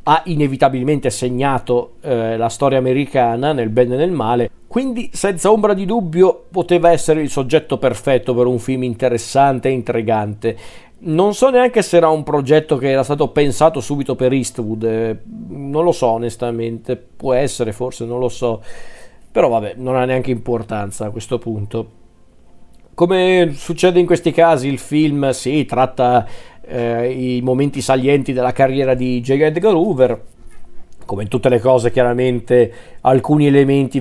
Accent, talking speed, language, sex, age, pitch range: native, 155 wpm, Italian, male, 40-59, 120-145 Hz